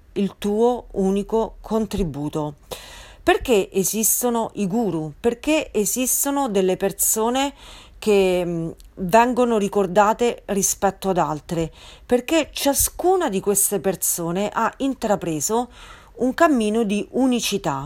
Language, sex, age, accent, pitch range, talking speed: Italian, female, 40-59, native, 180-235 Hz, 95 wpm